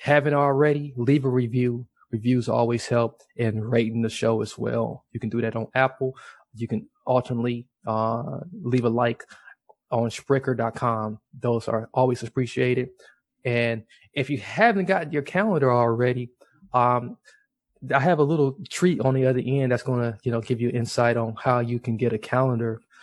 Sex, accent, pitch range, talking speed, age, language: male, American, 115-140 Hz, 170 wpm, 20-39, English